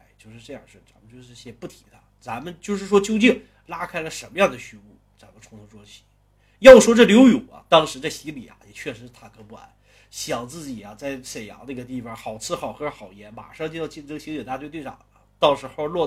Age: 30-49